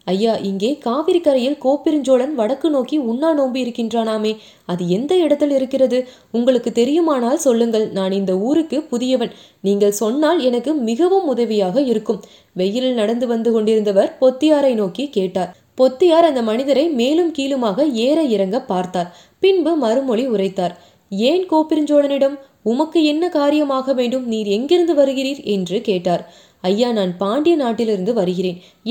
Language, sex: Tamil, female